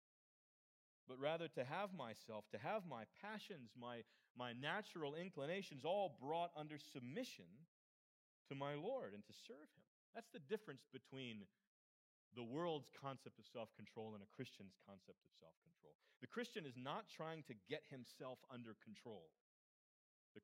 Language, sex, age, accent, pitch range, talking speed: English, male, 40-59, American, 115-170 Hz, 145 wpm